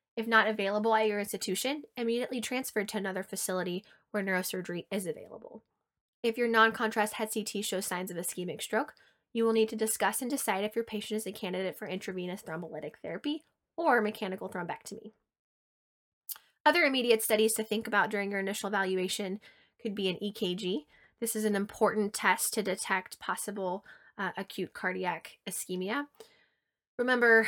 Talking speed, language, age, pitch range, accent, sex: 155 wpm, English, 20-39, 185-225 Hz, American, female